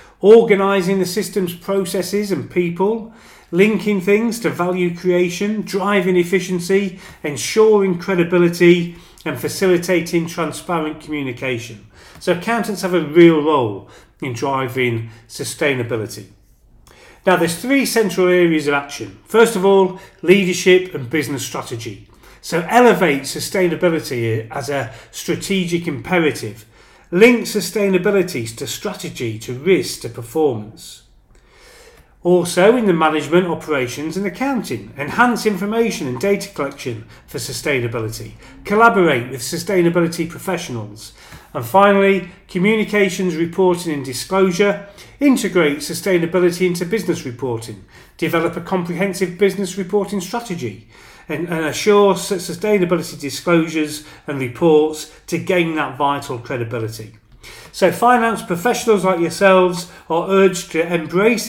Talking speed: 110 wpm